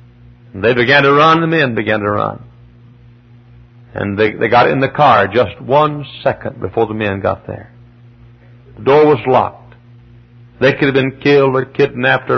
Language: English